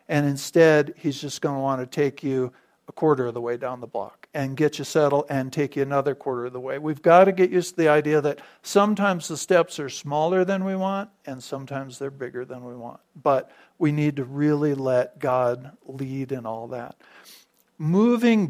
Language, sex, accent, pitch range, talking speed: English, male, American, 135-165 Hz, 215 wpm